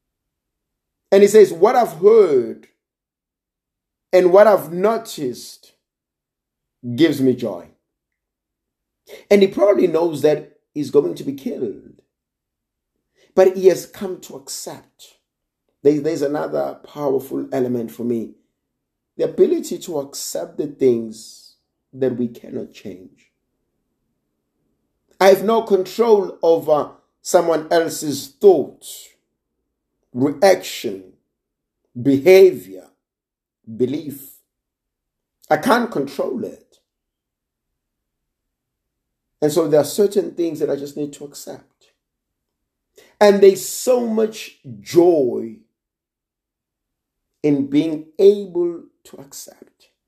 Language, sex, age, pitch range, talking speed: English, male, 50-69, 140-200 Hz, 100 wpm